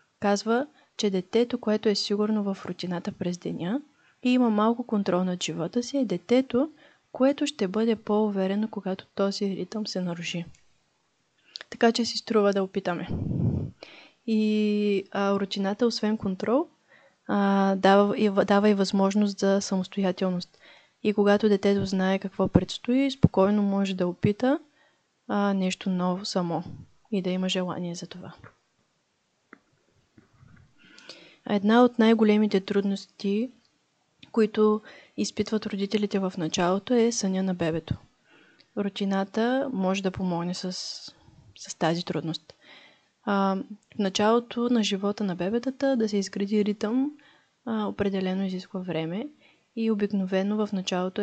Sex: female